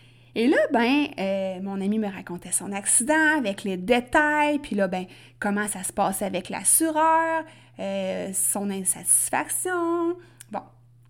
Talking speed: 140 wpm